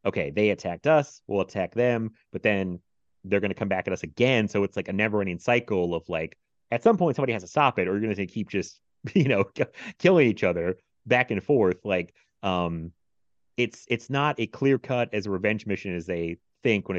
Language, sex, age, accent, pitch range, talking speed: English, male, 30-49, American, 90-120 Hz, 225 wpm